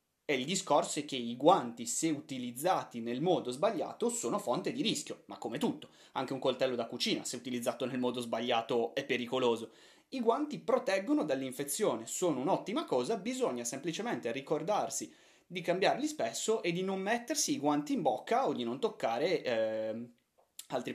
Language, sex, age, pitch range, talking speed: Italian, male, 30-49, 130-185 Hz, 165 wpm